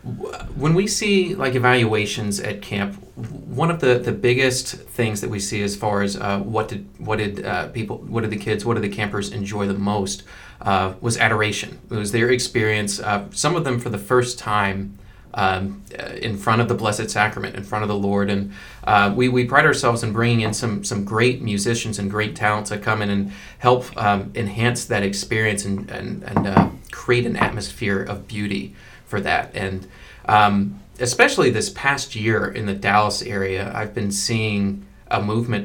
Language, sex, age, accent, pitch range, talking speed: English, male, 30-49, American, 100-120 Hz, 195 wpm